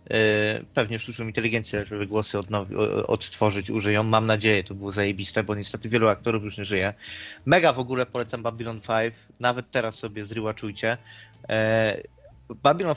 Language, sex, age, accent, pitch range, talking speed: Polish, male, 20-39, native, 110-135 Hz, 155 wpm